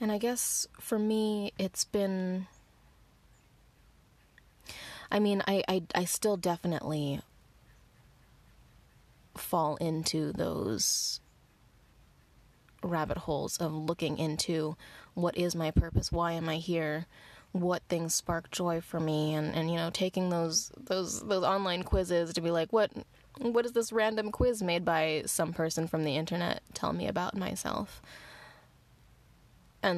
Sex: female